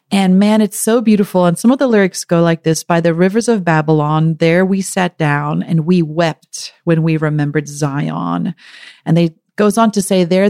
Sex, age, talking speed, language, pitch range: female, 40-59, 205 wpm, English, 160-195 Hz